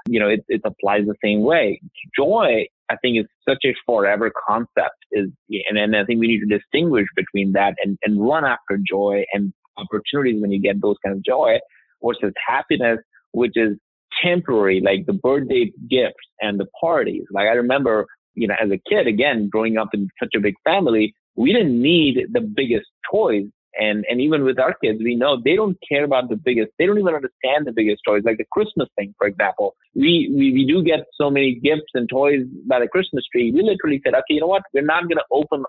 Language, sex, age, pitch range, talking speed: English, male, 30-49, 110-155 Hz, 215 wpm